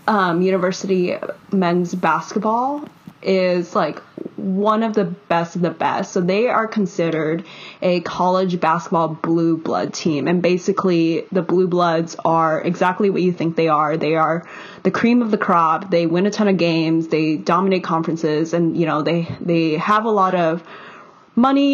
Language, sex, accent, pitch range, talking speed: English, female, American, 165-190 Hz, 170 wpm